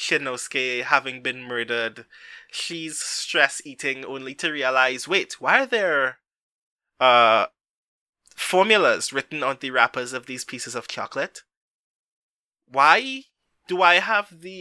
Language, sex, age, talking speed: English, male, 20-39, 125 wpm